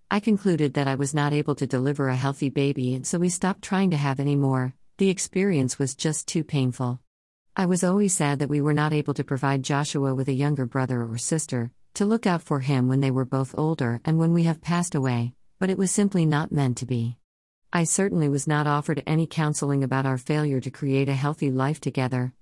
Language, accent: English, American